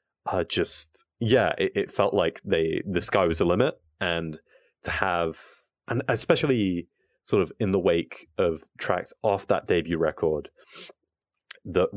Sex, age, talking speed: male, 30-49, 150 wpm